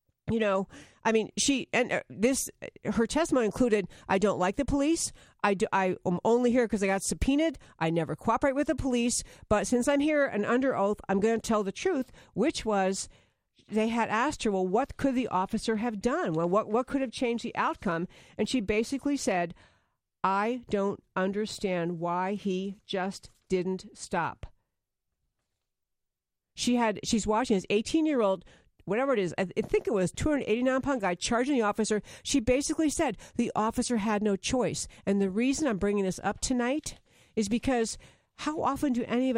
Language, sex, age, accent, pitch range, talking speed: English, female, 50-69, American, 195-250 Hz, 185 wpm